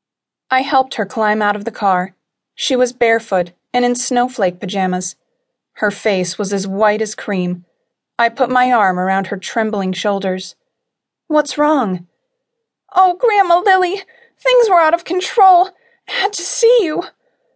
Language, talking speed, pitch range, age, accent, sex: English, 155 wpm, 195-280 Hz, 30-49, American, female